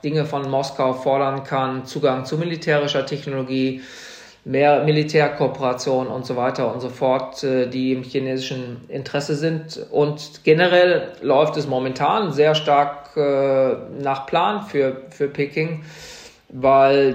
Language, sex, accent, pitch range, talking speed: German, male, German, 130-150 Hz, 120 wpm